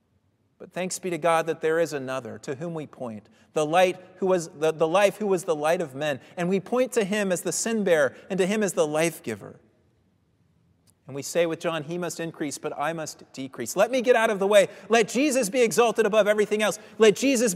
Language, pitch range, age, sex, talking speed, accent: English, 135-205 Hz, 30-49, male, 240 wpm, American